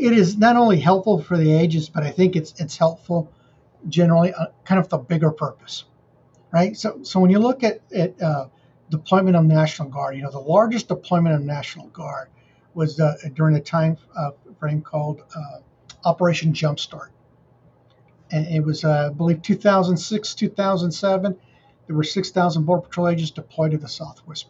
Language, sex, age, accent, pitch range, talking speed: English, male, 50-69, American, 155-185 Hz, 180 wpm